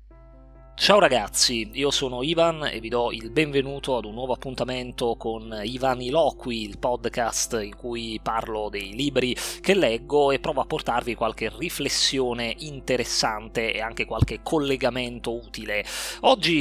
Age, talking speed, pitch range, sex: 20-39, 140 wpm, 115-140 Hz, male